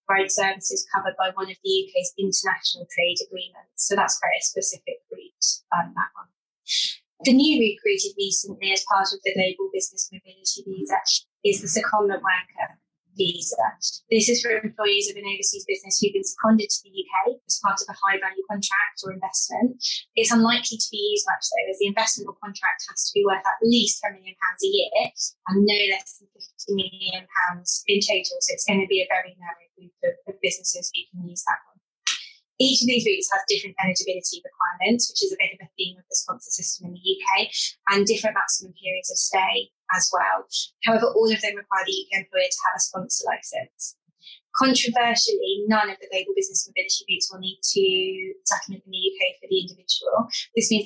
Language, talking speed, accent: English, 200 wpm, British